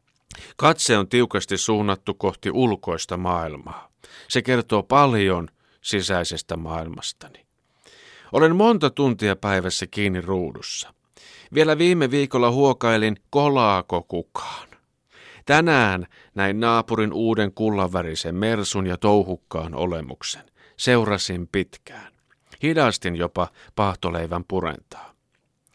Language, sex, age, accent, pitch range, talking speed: Finnish, male, 50-69, native, 90-125 Hz, 90 wpm